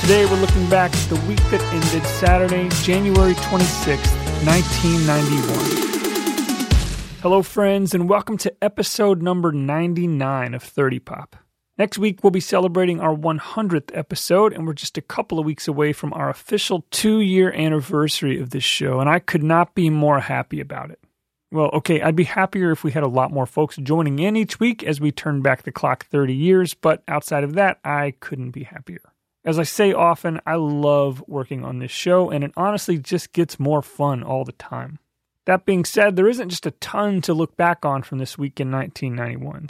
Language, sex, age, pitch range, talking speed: English, male, 40-59, 145-185 Hz, 190 wpm